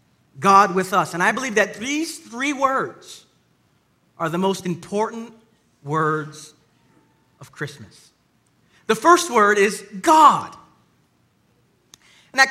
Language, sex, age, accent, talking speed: English, male, 40-59, American, 115 wpm